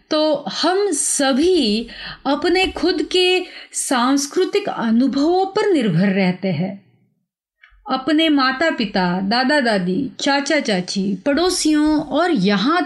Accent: native